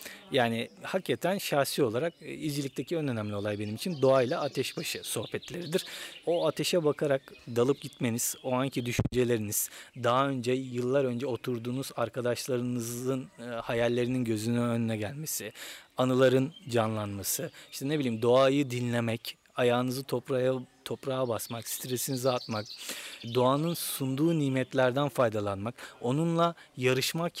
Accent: native